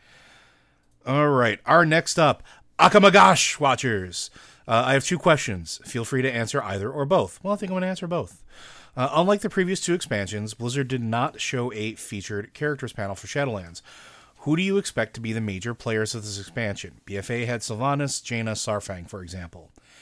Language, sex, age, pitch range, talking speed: English, male, 30-49, 100-135 Hz, 185 wpm